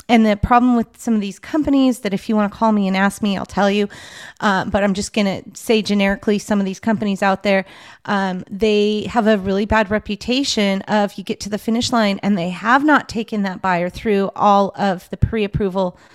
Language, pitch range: English, 185-215 Hz